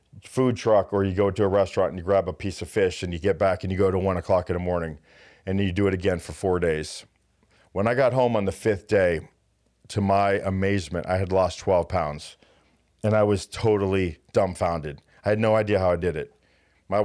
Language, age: English, 40-59